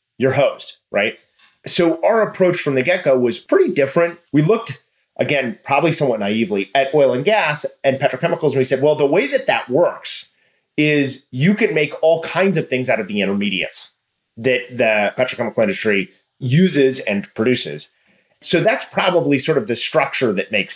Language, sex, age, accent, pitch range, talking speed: English, male, 30-49, American, 120-165 Hz, 180 wpm